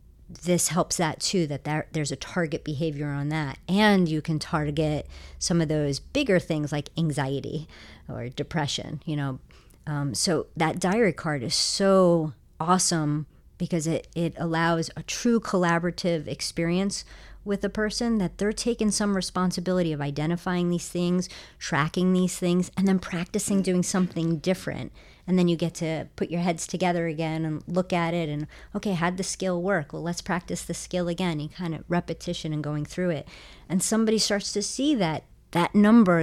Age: 40-59